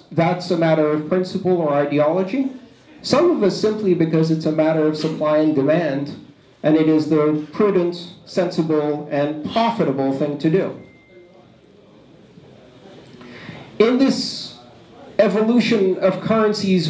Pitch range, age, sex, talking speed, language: 145-195 Hz, 50-69, male, 125 wpm, English